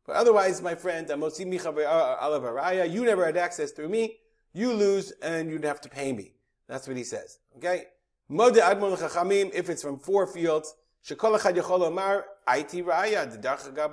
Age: 40-59